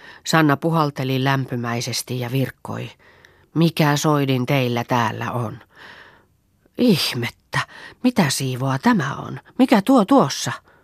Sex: female